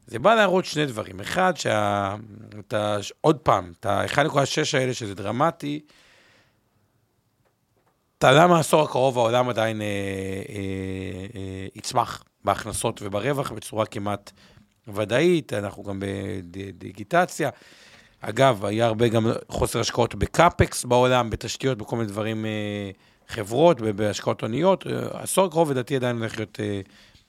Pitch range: 105-145 Hz